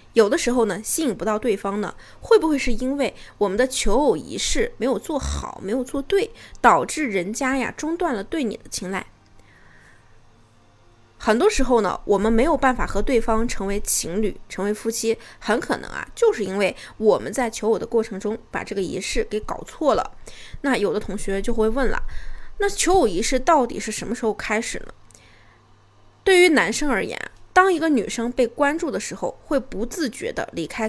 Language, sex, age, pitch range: Chinese, female, 20-39, 215-295 Hz